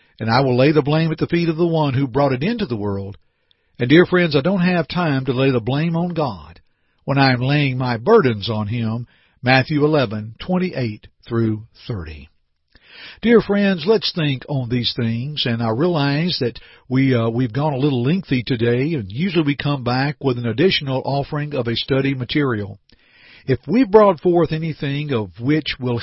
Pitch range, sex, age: 120-160 Hz, male, 50-69